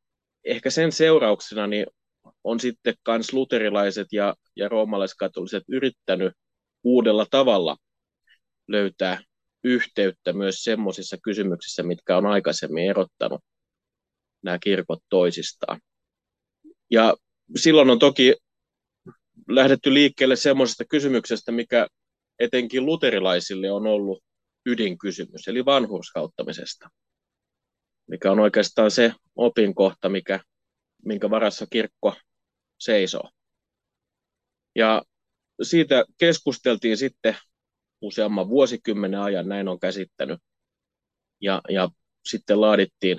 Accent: native